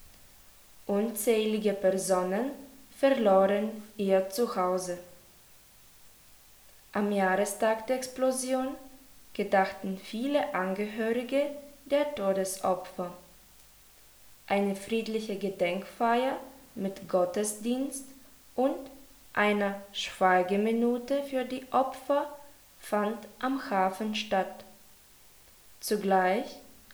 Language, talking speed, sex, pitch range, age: German, 65 wpm, female, 190-260 Hz, 20-39